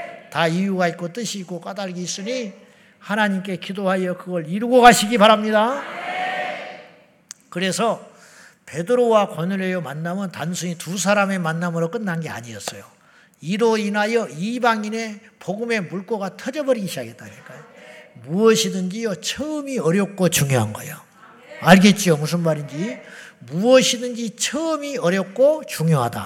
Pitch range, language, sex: 175-245 Hz, Korean, male